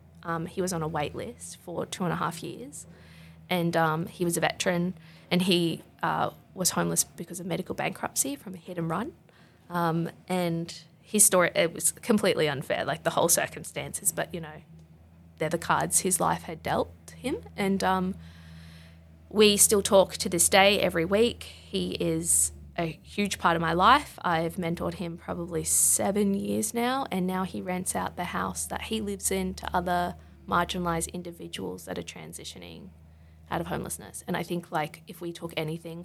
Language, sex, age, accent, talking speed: English, female, 20-39, Australian, 185 wpm